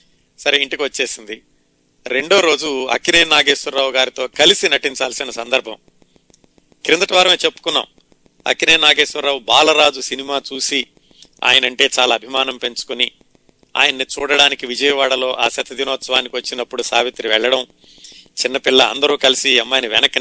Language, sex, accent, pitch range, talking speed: Telugu, male, native, 130-160 Hz, 105 wpm